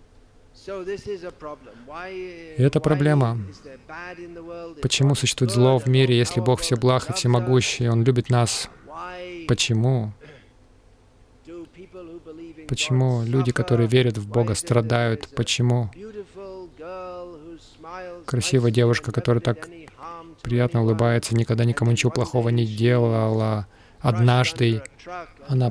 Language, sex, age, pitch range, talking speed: Russian, male, 20-39, 115-135 Hz, 95 wpm